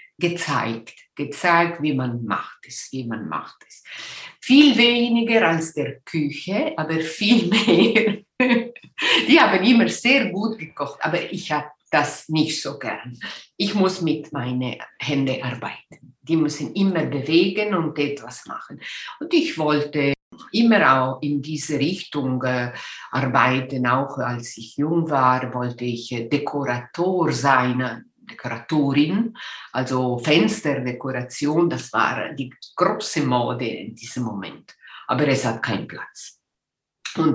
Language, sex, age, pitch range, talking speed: German, female, 50-69, 130-175 Hz, 125 wpm